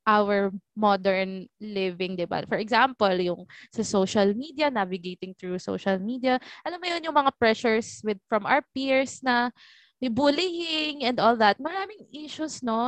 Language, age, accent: Filipino, 20-39, native